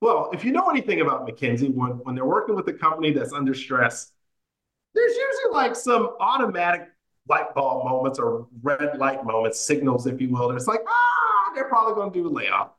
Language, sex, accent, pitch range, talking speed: English, male, American, 130-210 Hz, 205 wpm